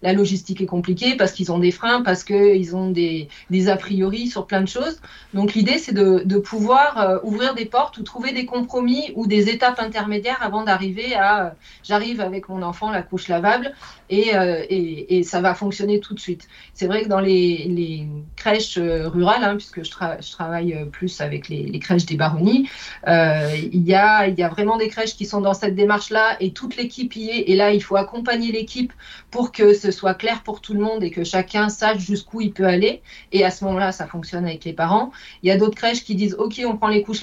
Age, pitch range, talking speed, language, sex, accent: 30-49, 180-215 Hz, 235 wpm, French, female, French